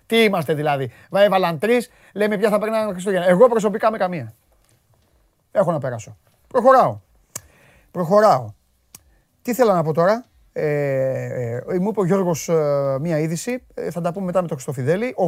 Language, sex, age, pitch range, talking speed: Greek, male, 30-49, 160-215 Hz, 175 wpm